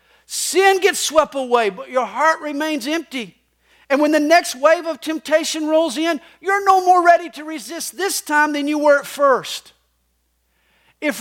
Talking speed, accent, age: 170 wpm, American, 50-69